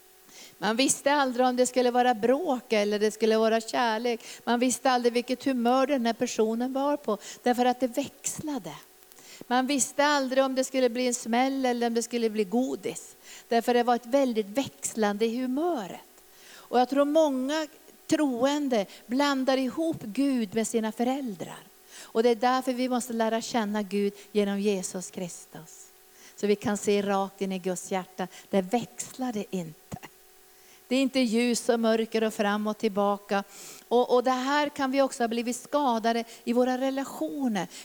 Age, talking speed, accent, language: 50-69, 170 wpm, native, Swedish